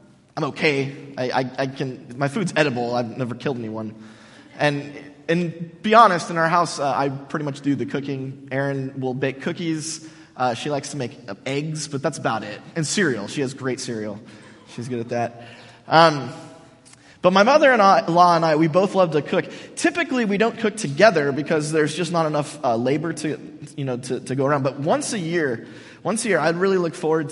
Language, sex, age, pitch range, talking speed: English, male, 20-39, 140-200 Hz, 210 wpm